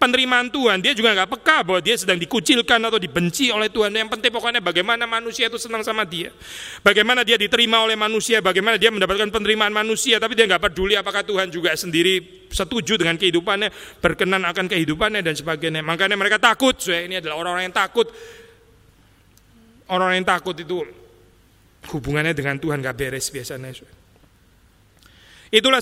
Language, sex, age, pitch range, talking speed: Indonesian, male, 30-49, 160-220 Hz, 160 wpm